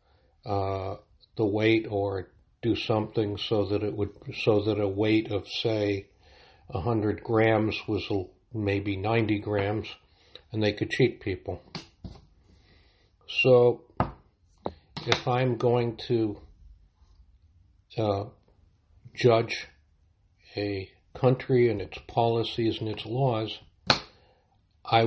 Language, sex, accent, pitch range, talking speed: English, male, American, 95-110 Hz, 110 wpm